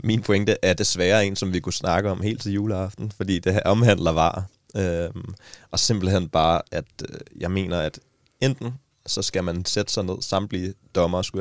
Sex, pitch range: male, 85-105 Hz